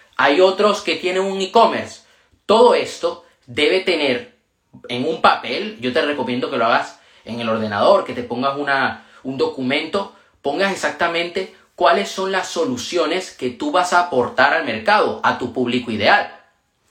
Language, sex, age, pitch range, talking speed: Spanish, male, 30-49, 135-210 Hz, 155 wpm